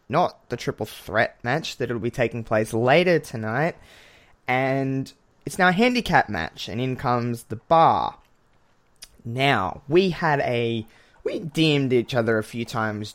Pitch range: 110-145 Hz